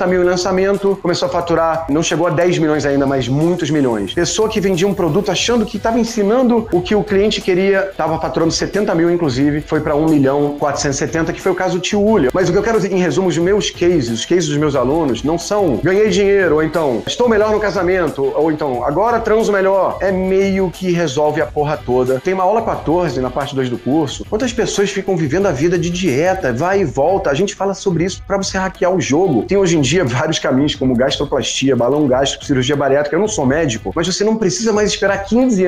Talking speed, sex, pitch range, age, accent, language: 225 wpm, male, 150-190 Hz, 30-49, Brazilian, Portuguese